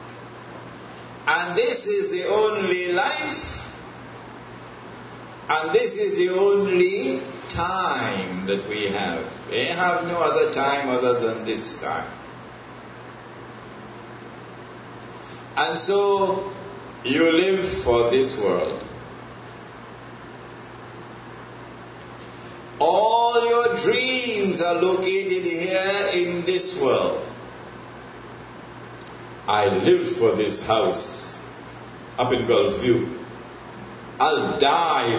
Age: 60-79